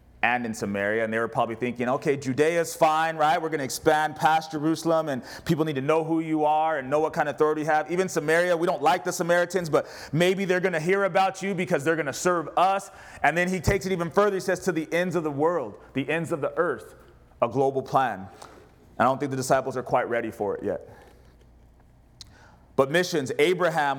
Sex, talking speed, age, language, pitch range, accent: male, 230 wpm, 30-49, English, 130-185 Hz, American